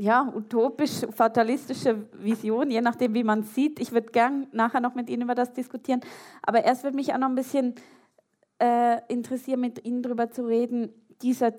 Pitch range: 190-230 Hz